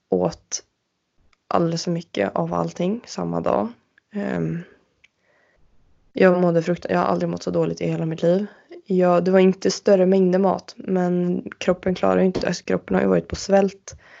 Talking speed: 170 wpm